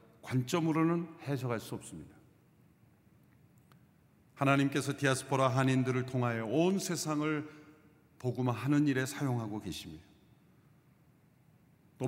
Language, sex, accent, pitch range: Korean, male, native, 105-140 Hz